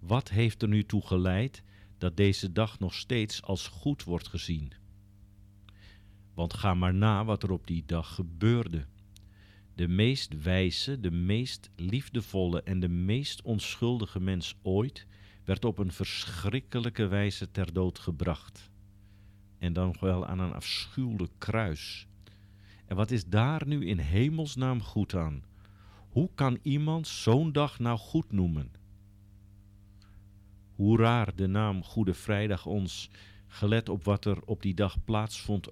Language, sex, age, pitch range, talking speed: Dutch, male, 50-69, 95-105 Hz, 140 wpm